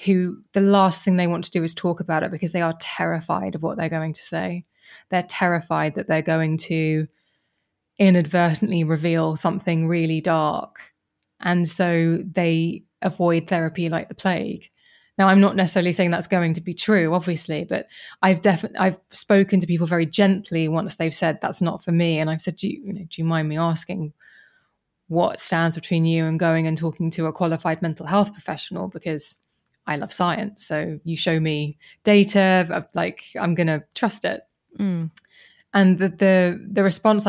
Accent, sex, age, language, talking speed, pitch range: British, female, 20-39, English, 185 wpm, 165-195 Hz